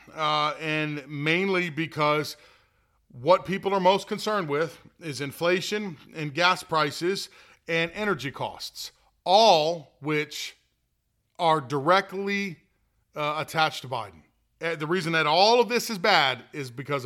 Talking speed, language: 125 wpm, English